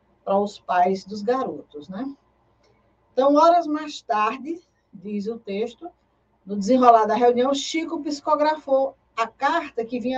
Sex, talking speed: female, 135 wpm